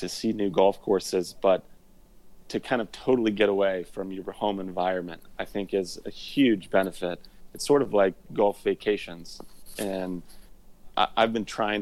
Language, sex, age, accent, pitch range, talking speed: English, male, 30-49, American, 95-105 Hz, 160 wpm